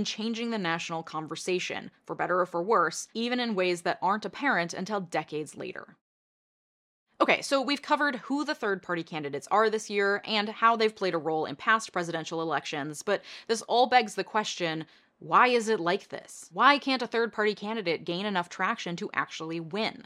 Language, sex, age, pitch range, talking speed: English, female, 20-39, 165-225 Hz, 190 wpm